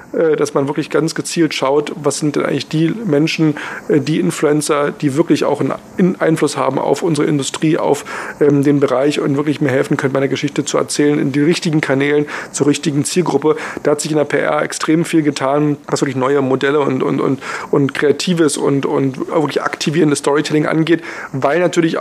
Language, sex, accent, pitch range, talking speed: German, male, German, 145-160 Hz, 185 wpm